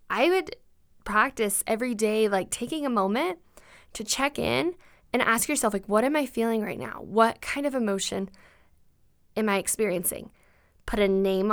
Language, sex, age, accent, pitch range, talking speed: English, female, 10-29, American, 195-240 Hz, 165 wpm